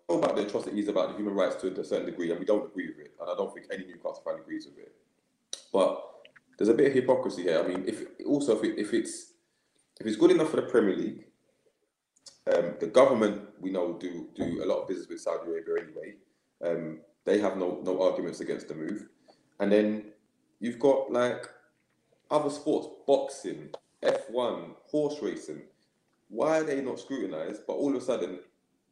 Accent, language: British, English